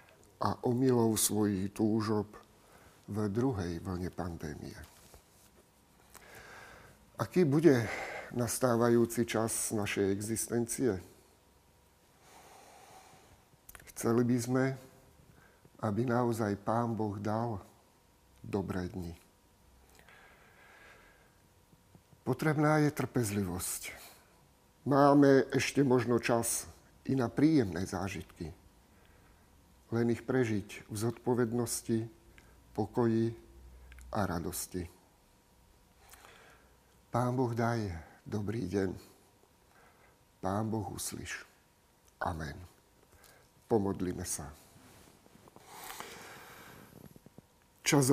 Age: 50-69